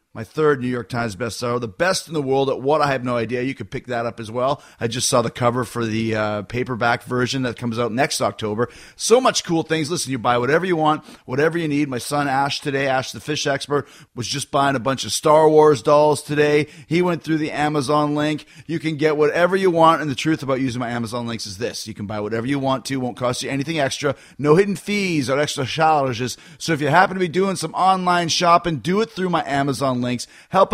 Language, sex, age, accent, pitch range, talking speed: English, male, 30-49, American, 130-165 Hz, 250 wpm